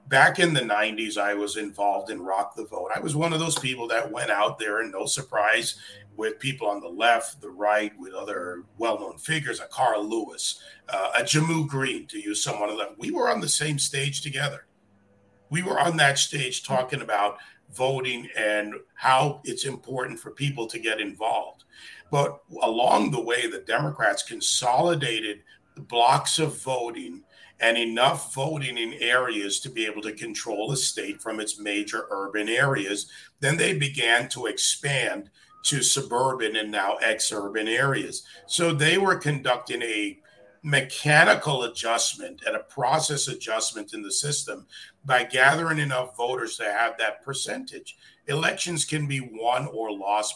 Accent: American